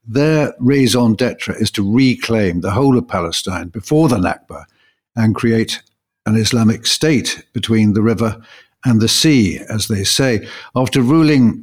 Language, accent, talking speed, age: English, British, 150 wpm, 60-79